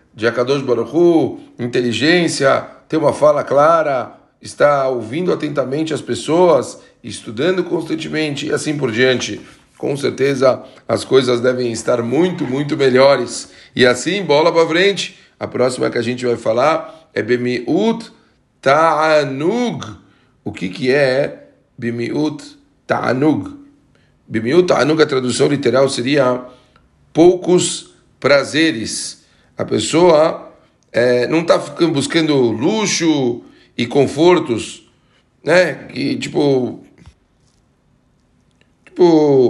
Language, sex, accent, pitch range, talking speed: Portuguese, male, Brazilian, 130-170 Hz, 105 wpm